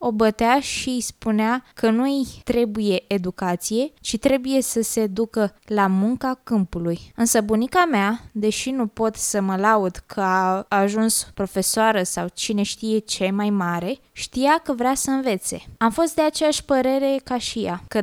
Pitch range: 200-245 Hz